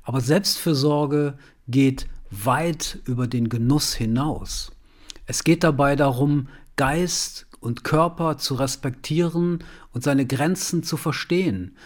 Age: 40-59